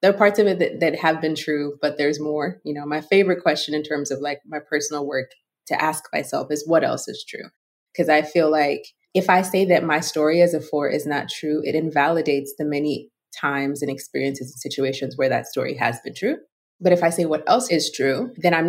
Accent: American